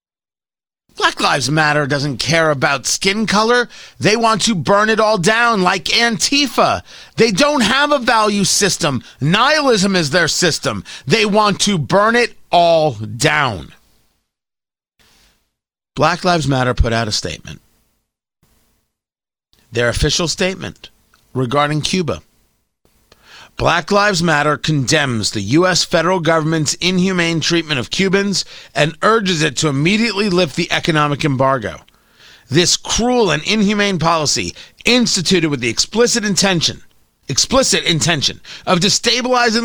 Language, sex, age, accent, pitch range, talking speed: English, male, 40-59, American, 150-215 Hz, 125 wpm